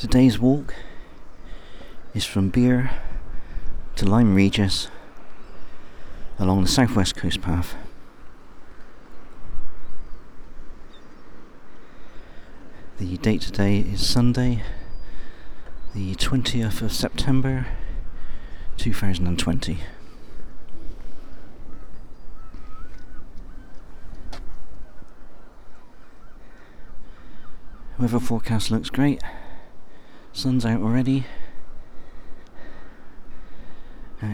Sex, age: male, 40-59